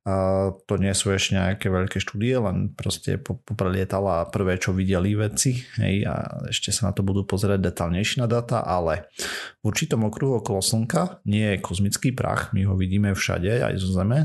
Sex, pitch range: male, 95-115 Hz